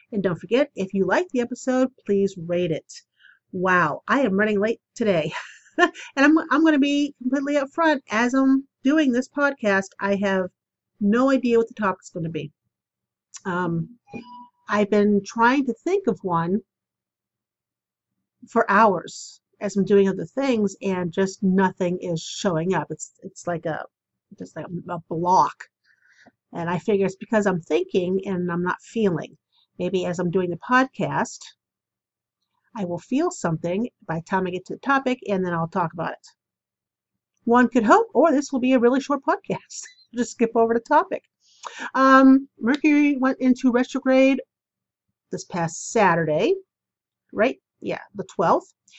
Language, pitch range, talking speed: English, 185-265 Hz, 165 wpm